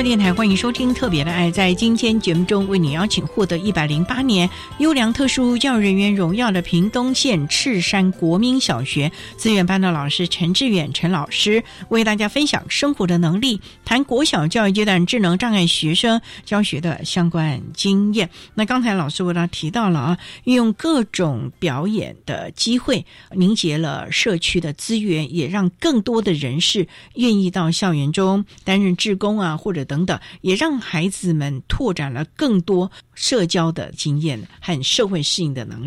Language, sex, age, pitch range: Chinese, female, 60-79, 165-220 Hz